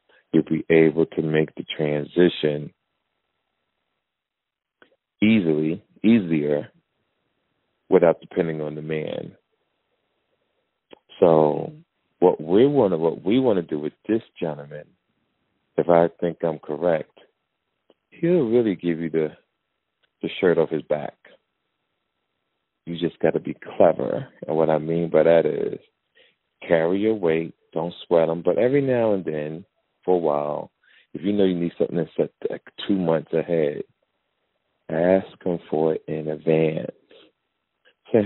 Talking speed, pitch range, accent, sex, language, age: 135 wpm, 80-100 Hz, American, male, English, 40-59